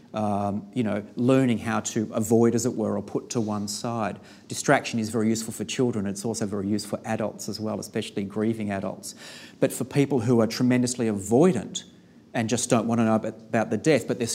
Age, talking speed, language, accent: 40-59, 210 wpm, English, Australian